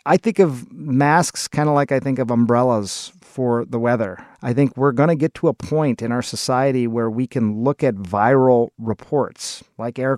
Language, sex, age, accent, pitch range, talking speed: English, male, 40-59, American, 115-145 Hz, 205 wpm